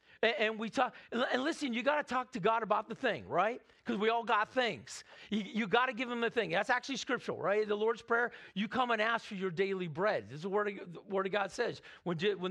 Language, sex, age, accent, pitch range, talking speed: English, male, 50-69, American, 195-245 Hz, 250 wpm